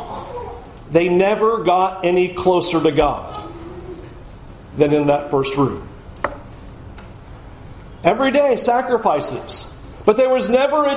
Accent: American